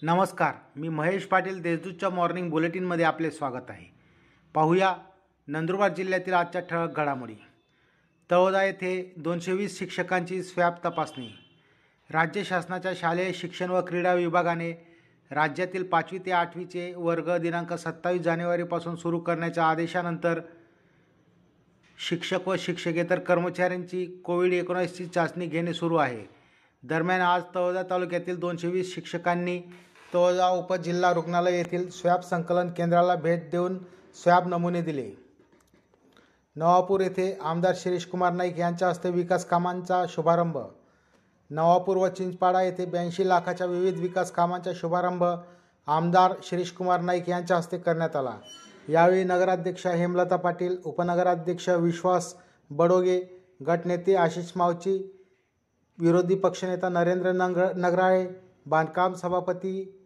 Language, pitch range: Marathi, 170-180 Hz